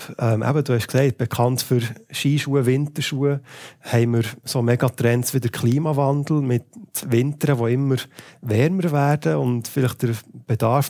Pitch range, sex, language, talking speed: 120-145 Hz, male, German, 145 wpm